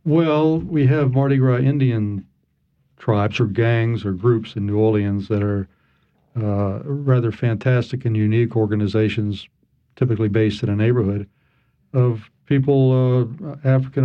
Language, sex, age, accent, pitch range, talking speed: English, male, 60-79, American, 105-130 Hz, 130 wpm